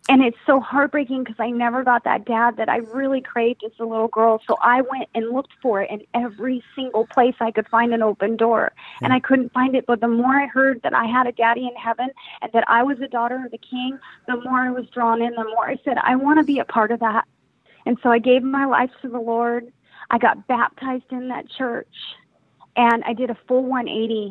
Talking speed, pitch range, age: 245 wpm, 215-255 Hz, 30-49